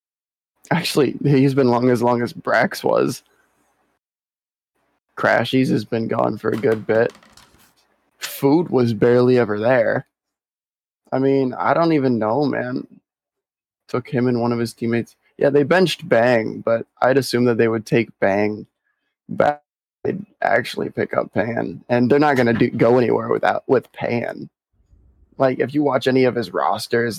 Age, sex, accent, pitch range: 20-39, male, American, 110-130 Hz